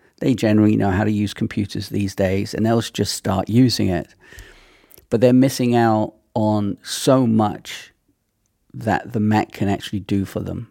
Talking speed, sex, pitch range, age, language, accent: 170 wpm, male, 100-120 Hz, 40-59, English, British